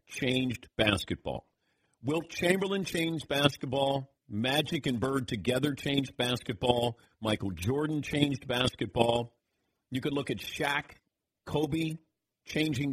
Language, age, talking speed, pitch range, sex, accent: English, 50-69, 105 wpm, 115-165 Hz, male, American